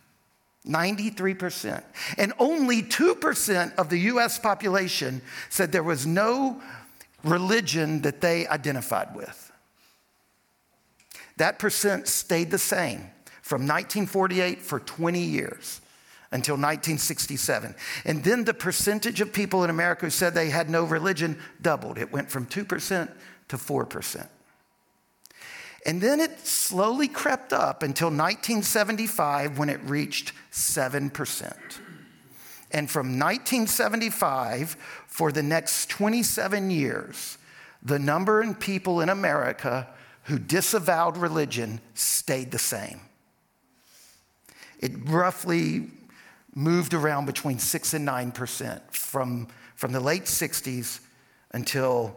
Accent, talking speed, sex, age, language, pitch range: American, 110 wpm, male, 60-79, English, 145-200 Hz